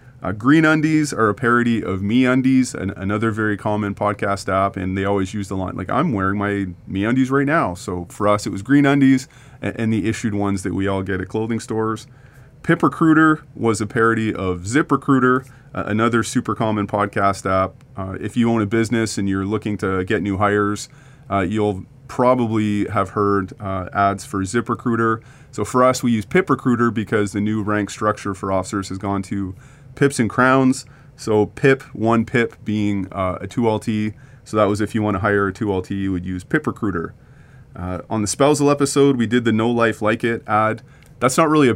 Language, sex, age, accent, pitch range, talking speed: English, male, 30-49, American, 100-125 Hz, 210 wpm